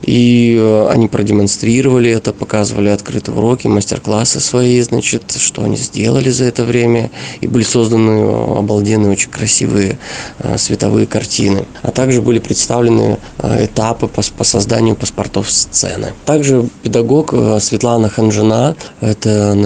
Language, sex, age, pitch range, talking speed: Russian, male, 20-39, 105-125 Hz, 115 wpm